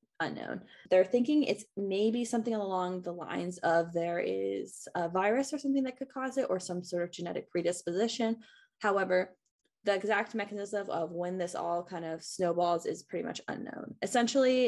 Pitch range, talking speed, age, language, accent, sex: 175-220 Hz, 175 wpm, 20-39, English, American, female